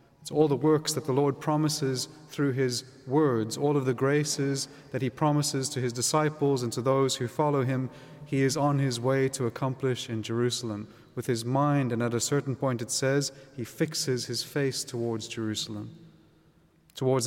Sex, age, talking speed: male, 30-49, 185 wpm